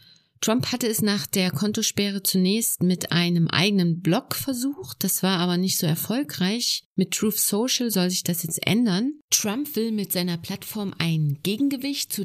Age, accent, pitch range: 30-49, German, 170-210 Hz